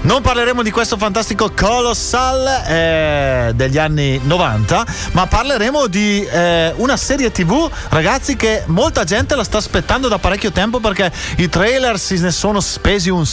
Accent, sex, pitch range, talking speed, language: native, male, 155-205 Hz, 160 wpm, Italian